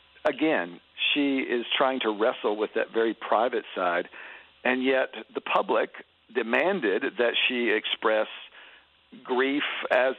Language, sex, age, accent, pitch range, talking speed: English, male, 50-69, American, 110-140 Hz, 125 wpm